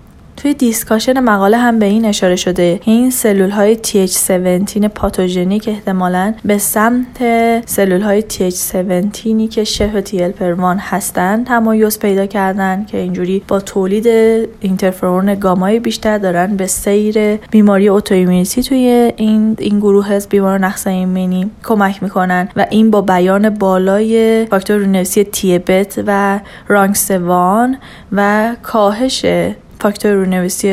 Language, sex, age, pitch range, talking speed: Persian, female, 10-29, 185-220 Hz, 130 wpm